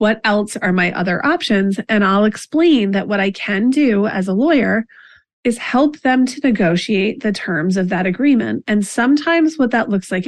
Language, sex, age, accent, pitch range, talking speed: English, female, 30-49, American, 185-235 Hz, 195 wpm